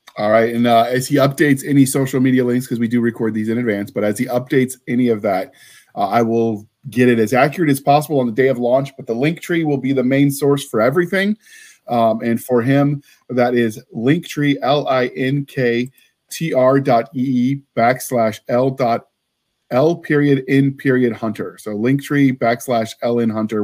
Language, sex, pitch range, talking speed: English, male, 115-135 Hz, 190 wpm